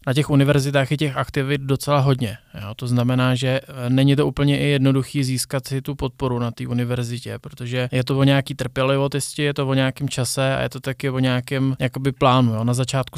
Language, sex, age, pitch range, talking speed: Czech, male, 20-39, 125-135 Hz, 205 wpm